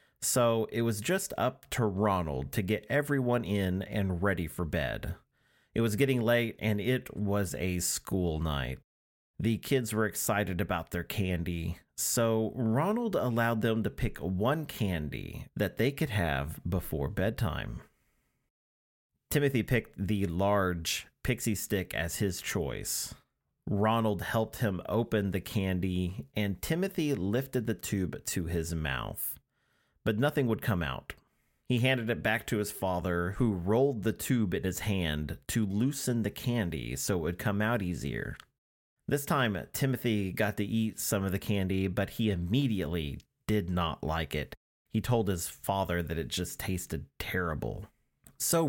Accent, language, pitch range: American, English, 85-115 Hz